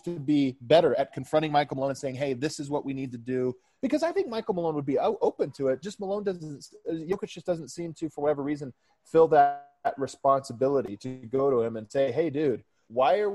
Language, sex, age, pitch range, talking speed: English, male, 20-39, 135-190 Hz, 235 wpm